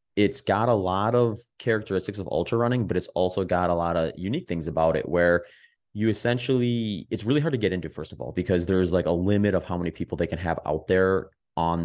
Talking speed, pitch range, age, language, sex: 240 wpm, 85-110 Hz, 30-49, English, male